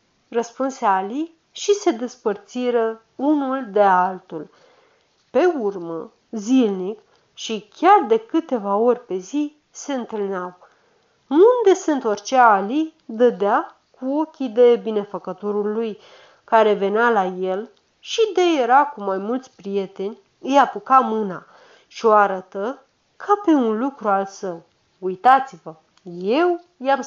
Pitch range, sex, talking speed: 205-295 Hz, female, 125 wpm